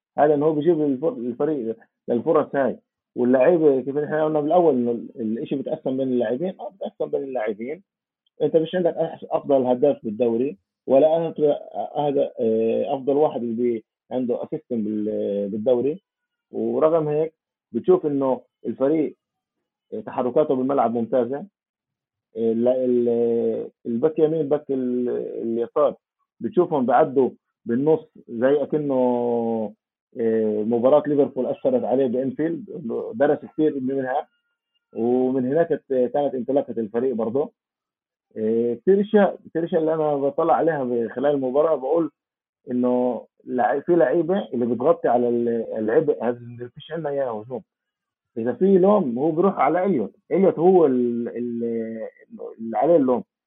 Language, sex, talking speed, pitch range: Arabic, male, 115 wpm, 120-160 Hz